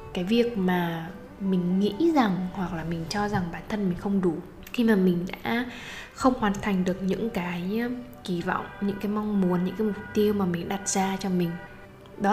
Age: 10-29